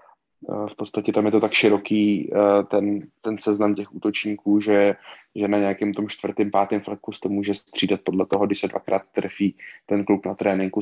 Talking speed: 185 wpm